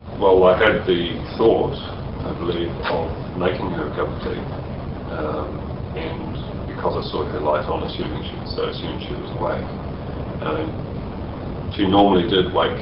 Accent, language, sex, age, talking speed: British, English, male, 40-59, 175 wpm